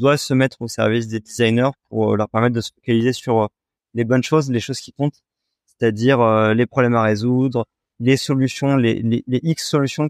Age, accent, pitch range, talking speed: 30-49, French, 115-135 Hz, 195 wpm